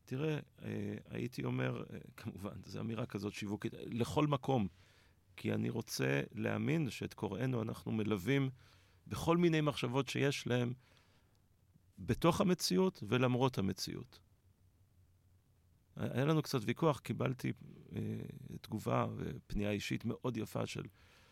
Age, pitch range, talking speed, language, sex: 40-59, 100-125 Hz, 105 wpm, Hebrew, male